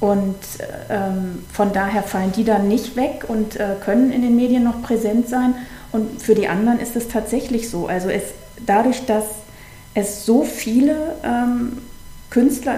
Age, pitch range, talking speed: 40-59, 205-245 Hz, 160 wpm